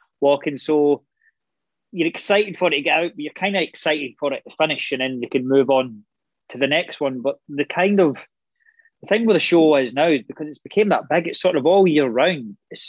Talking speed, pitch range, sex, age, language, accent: 240 wpm, 130-165 Hz, male, 20-39, English, British